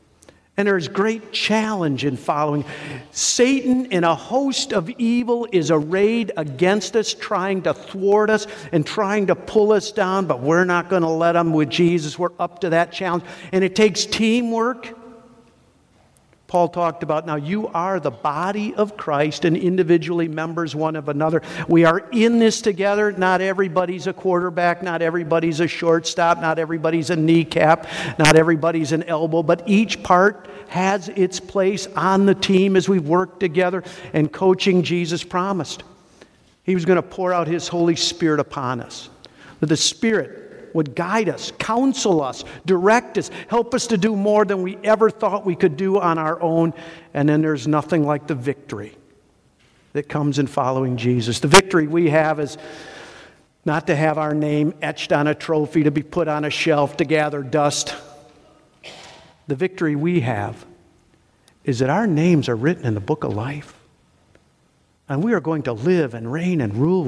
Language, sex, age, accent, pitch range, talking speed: English, male, 50-69, American, 155-195 Hz, 175 wpm